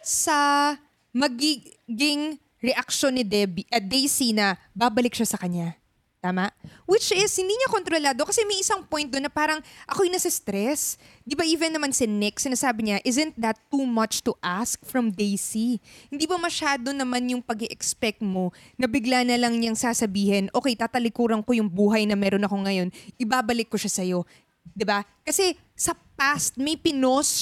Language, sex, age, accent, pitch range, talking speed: Filipino, female, 20-39, native, 205-290 Hz, 175 wpm